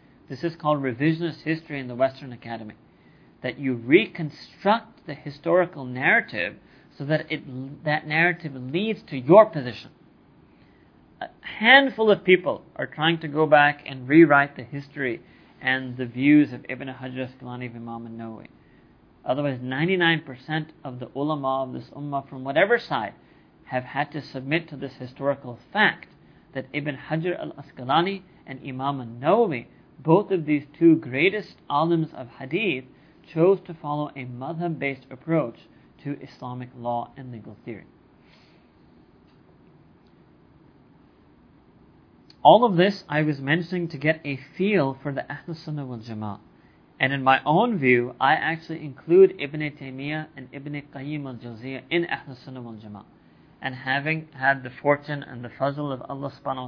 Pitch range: 130-160 Hz